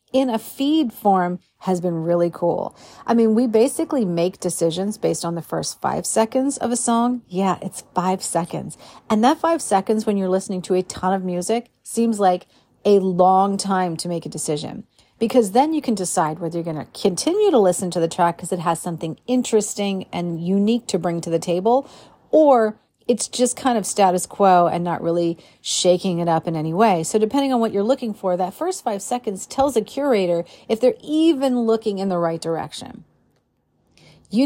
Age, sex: 40-59, female